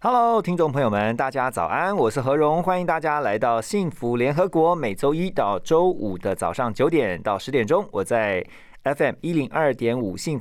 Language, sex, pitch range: Chinese, male, 110-155 Hz